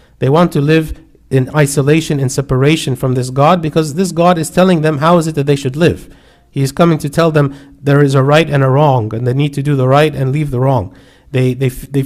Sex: male